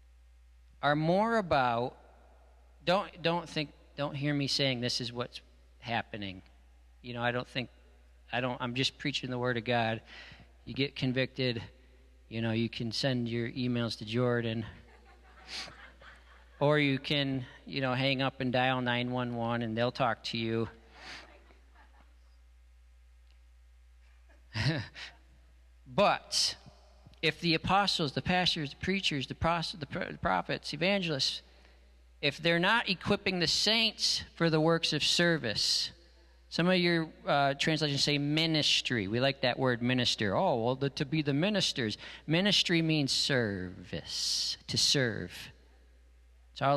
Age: 40-59